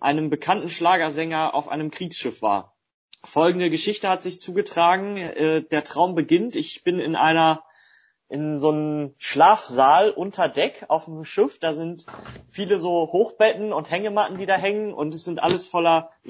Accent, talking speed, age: German, 165 wpm, 30-49